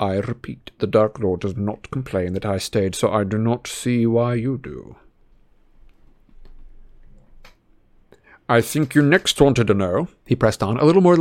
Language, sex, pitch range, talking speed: English, male, 100-120 Hz, 170 wpm